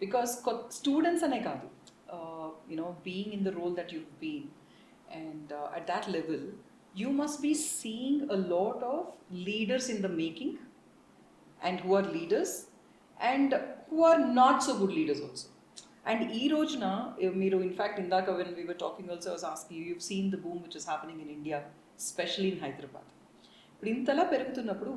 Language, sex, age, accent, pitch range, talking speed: Telugu, female, 40-59, native, 180-270 Hz, 180 wpm